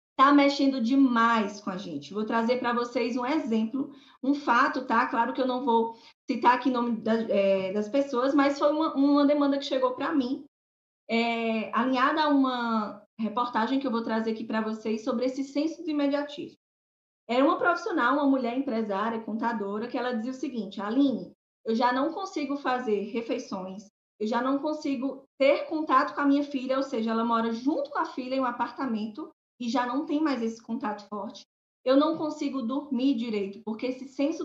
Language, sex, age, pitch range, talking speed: Portuguese, female, 20-39, 230-285 Hz, 195 wpm